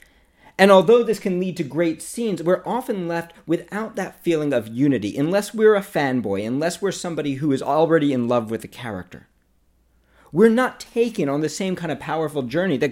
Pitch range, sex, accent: 100-165 Hz, male, American